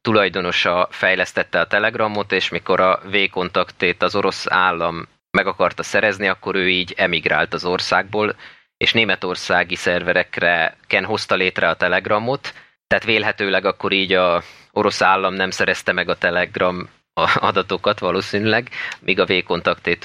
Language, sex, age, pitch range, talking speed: Hungarian, male, 20-39, 90-110 Hz, 135 wpm